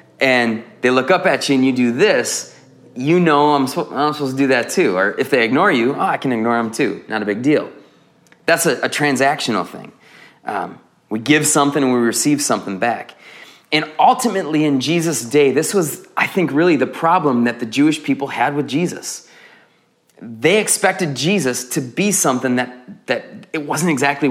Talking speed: 195 wpm